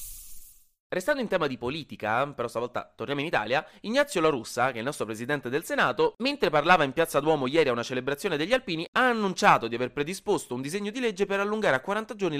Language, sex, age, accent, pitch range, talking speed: Italian, male, 20-39, native, 120-175 Hz, 220 wpm